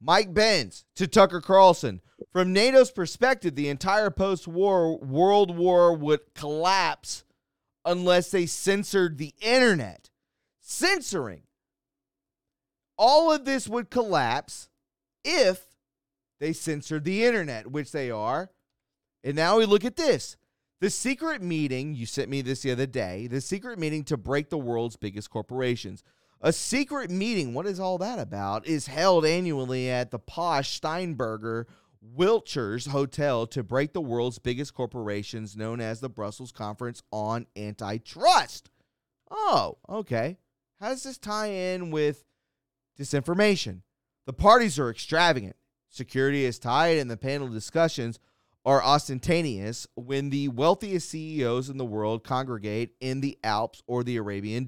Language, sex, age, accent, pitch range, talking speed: English, male, 30-49, American, 125-185 Hz, 135 wpm